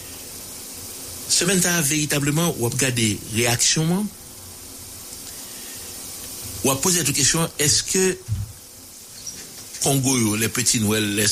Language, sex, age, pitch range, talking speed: English, male, 60-79, 95-120 Hz, 90 wpm